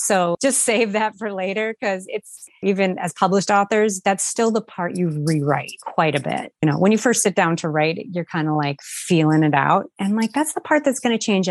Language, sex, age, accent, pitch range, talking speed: English, female, 30-49, American, 180-235 Hz, 240 wpm